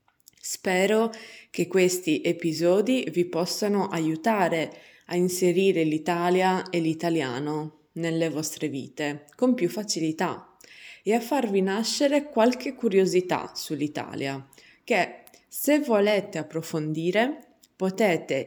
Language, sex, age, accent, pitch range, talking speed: Italian, female, 20-39, native, 160-215 Hz, 95 wpm